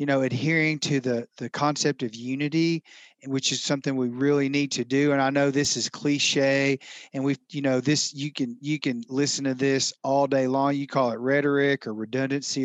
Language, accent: English, American